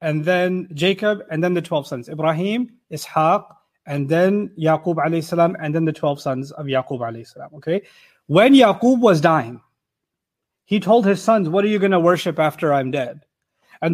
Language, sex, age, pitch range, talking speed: English, male, 30-49, 165-215 Hz, 180 wpm